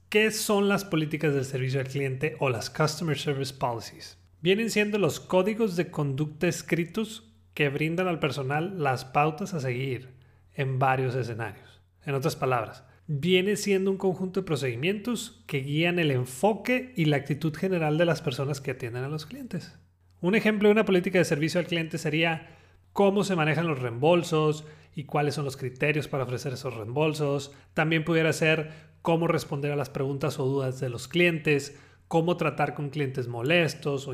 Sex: male